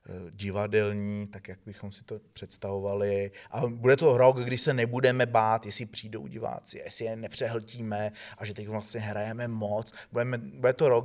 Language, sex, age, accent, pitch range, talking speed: Czech, male, 30-49, native, 105-125 Hz, 165 wpm